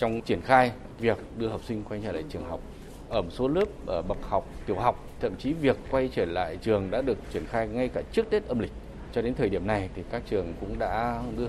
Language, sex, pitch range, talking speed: Vietnamese, male, 100-125 Hz, 255 wpm